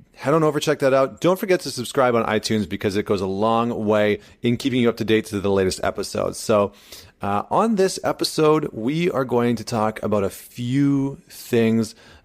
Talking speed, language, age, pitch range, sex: 205 wpm, English, 30-49, 100-120 Hz, male